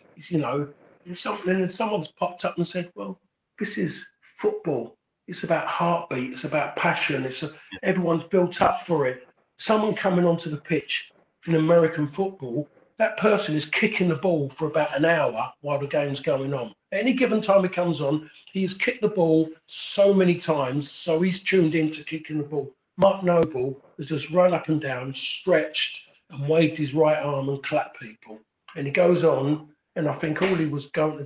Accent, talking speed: British, 200 wpm